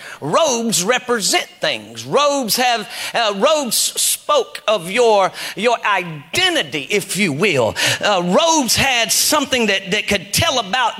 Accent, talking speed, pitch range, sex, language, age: American, 130 wpm, 230-295 Hz, male, English, 40-59